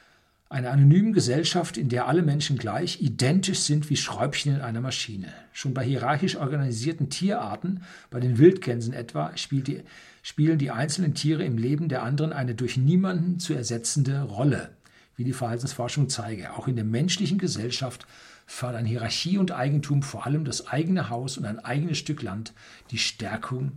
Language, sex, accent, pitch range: German, male, German, 125-160 Hz